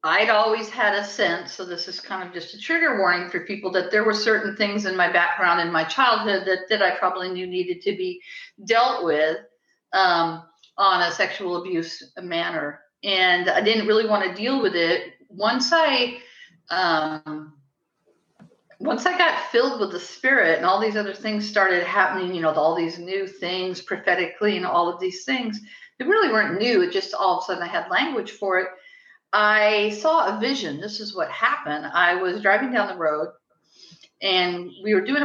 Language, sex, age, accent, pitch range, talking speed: English, female, 50-69, American, 170-215 Hz, 195 wpm